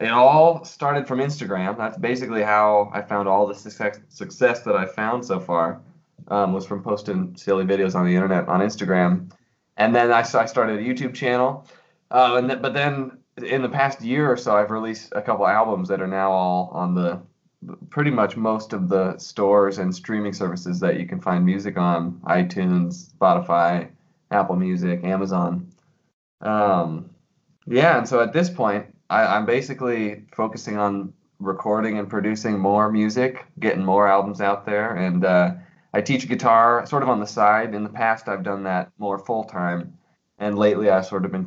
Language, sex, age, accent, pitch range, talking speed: English, male, 20-39, American, 95-125 Hz, 180 wpm